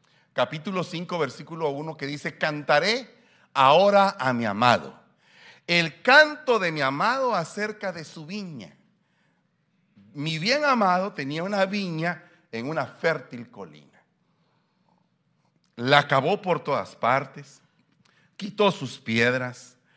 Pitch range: 145-200 Hz